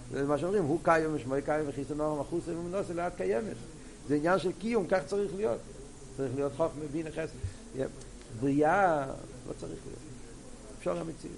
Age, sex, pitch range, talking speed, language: 60-79, male, 125-160 Hz, 170 wpm, Hebrew